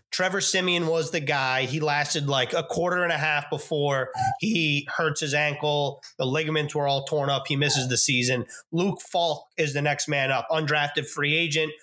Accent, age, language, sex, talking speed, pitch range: American, 20-39, English, male, 195 wpm, 145-175 Hz